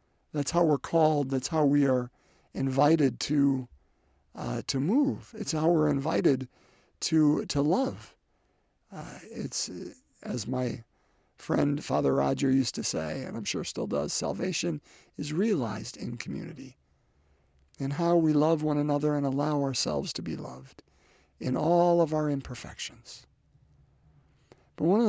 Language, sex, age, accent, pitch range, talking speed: English, male, 50-69, American, 125-170 Hz, 145 wpm